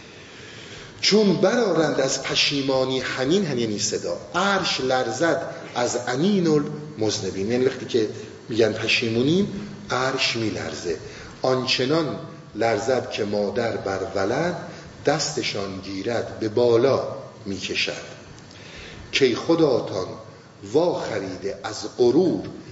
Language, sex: Persian, male